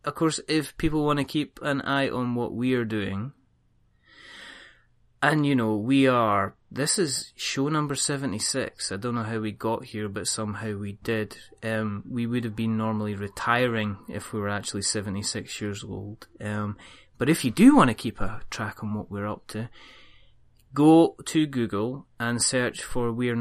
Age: 20-39